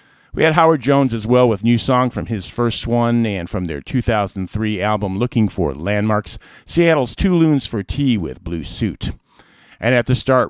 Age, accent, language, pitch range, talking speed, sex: 50-69, American, English, 95-125 Hz, 190 wpm, male